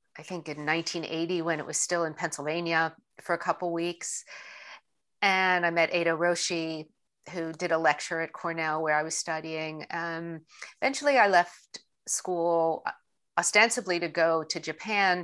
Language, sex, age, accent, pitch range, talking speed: English, female, 50-69, American, 155-175 Hz, 155 wpm